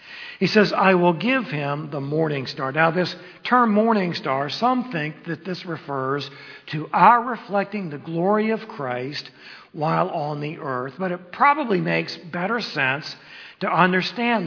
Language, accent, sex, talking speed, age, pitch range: English, American, male, 160 wpm, 60-79, 145-205 Hz